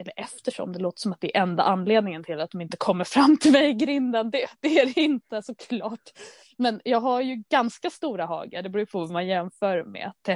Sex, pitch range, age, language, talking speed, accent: female, 185-260 Hz, 20-39, Swedish, 230 wpm, native